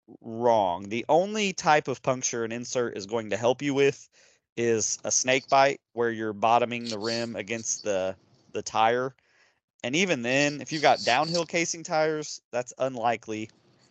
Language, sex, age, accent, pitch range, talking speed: English, male, 30-49, American, 110-135 Hz, 165 wpm